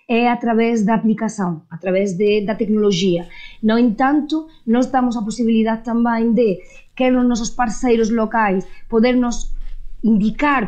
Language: Portuguese